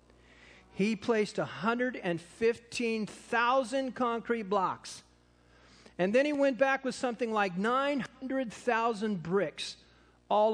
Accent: American